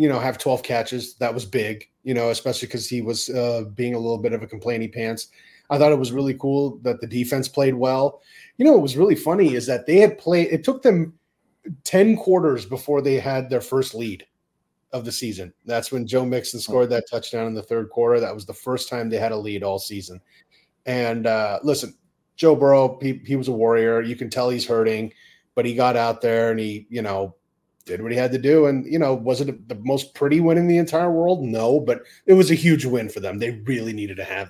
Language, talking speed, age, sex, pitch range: English, 240 wpm, 30-49, male, 115-135 Hz